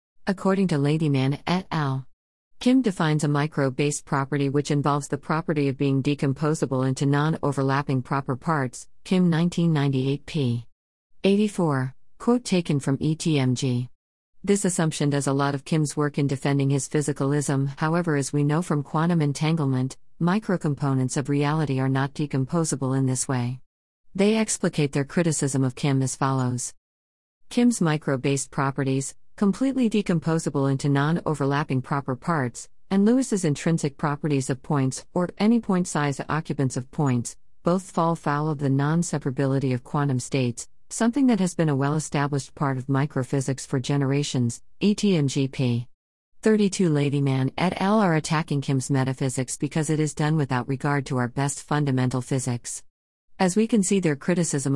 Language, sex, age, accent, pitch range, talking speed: English, female, 50-69, American, 135-165 Hz, 150 wpm